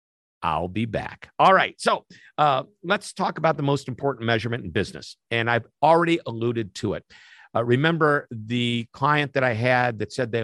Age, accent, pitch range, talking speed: 50-69, American, 115-135 Hz, 185 wpm